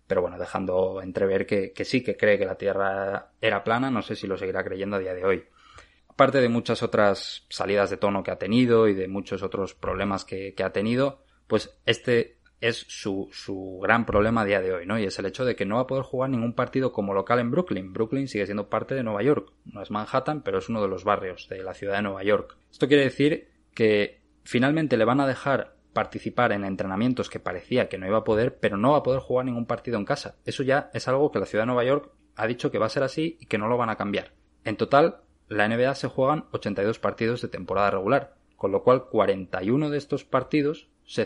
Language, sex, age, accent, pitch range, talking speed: Spanish, male, 20-39, Spanish, 100-130 Hz, 240 wpm